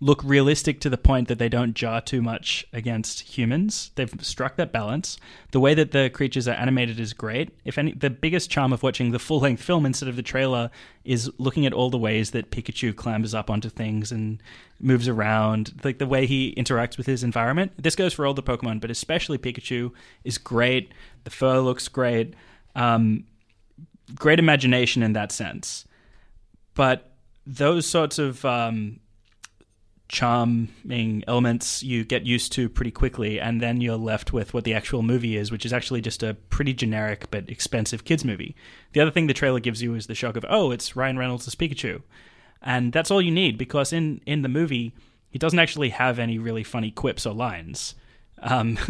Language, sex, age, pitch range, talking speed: English, male, 20-39, 115-140 Hz, 190 wpm